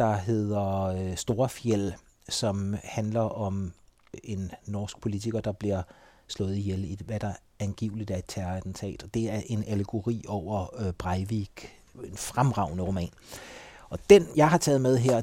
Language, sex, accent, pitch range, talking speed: Danish, male, native, 100-125 Hz, 145 wpm